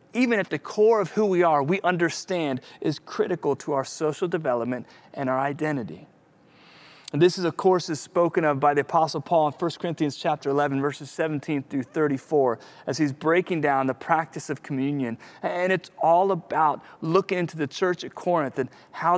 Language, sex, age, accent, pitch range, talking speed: English, male, 30-49, American, 135-170 Hz, 185 wpm